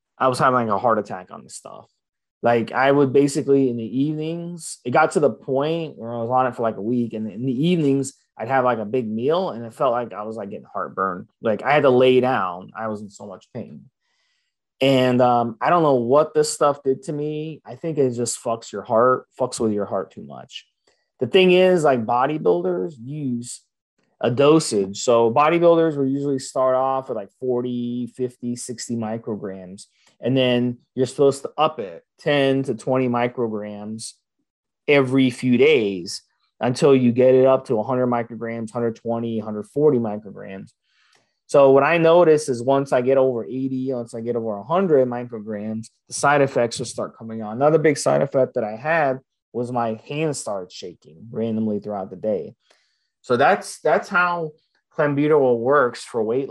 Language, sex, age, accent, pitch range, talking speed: English, male, 20-39, American, 115-140 Hz, 190 wpm